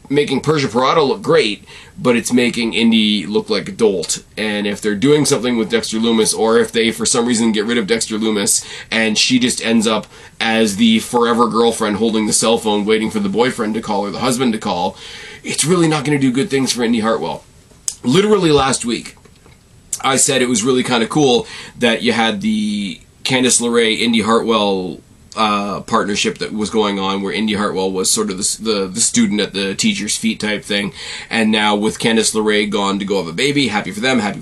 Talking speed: 215 wpm